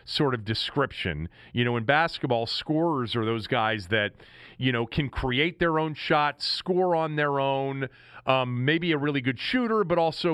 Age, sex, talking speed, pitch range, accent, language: 40-59, male, 180 wpm, 125-165 Hz, American, English